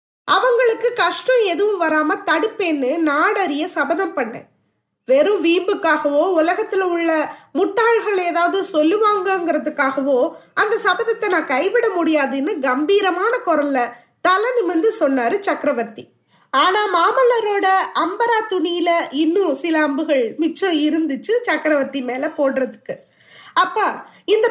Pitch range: 305-415 Hz